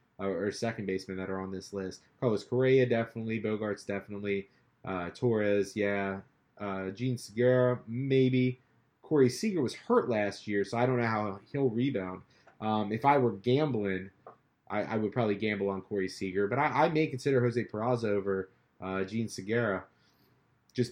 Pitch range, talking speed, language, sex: 100-130 Hz, 165 wpm, English, male